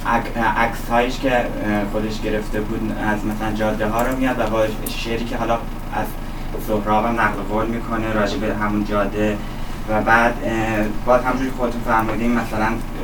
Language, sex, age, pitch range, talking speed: Persian, male, 20-39, 110-125 Hz, 145 wpm